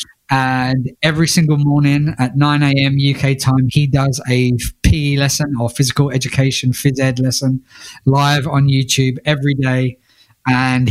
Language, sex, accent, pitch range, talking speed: English, male, British, 125-140 Hz, 145 wpm